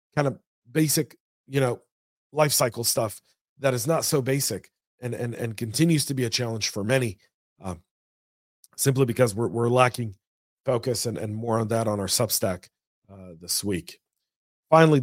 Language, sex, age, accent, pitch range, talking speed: English, male, 40-59, American, 110-135 Hz, 170 wpm